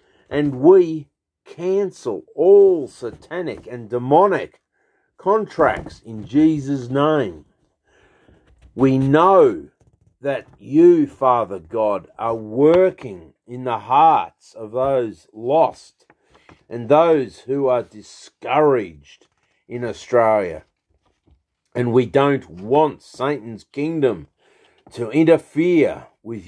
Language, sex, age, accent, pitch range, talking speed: English, male, 50-69, Australian, 120-165 Hz, 95 wpm